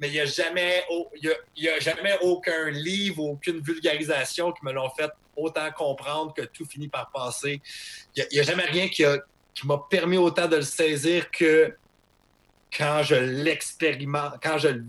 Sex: male